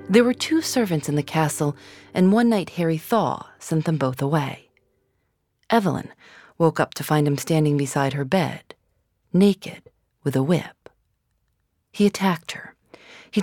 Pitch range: 140-185 Hz